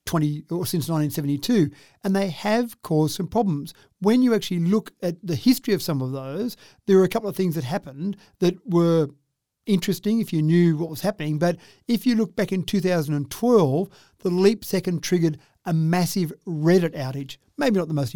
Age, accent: 50-69, Australian